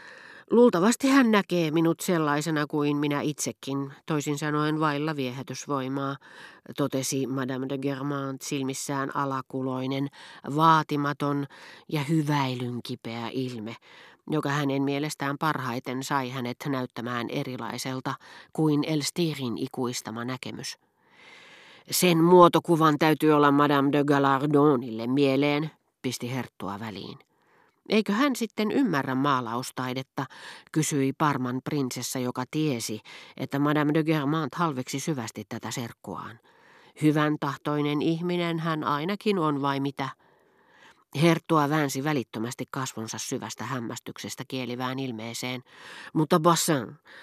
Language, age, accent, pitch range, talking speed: Finnish, 40-59, native, 130-155 Hz, 105 wpm